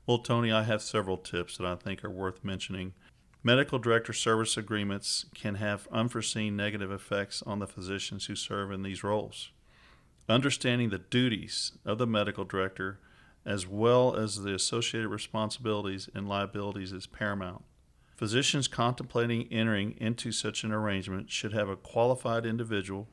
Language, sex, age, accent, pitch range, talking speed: English, male, 50-69, American, 100-115 Hz, 150 wpm